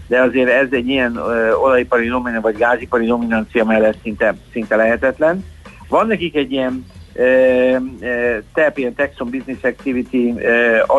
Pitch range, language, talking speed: 120-140 Hz, Hungarian, 130 wpm